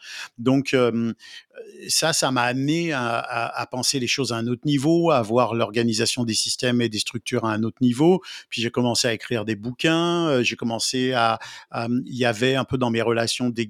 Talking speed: 205 wpm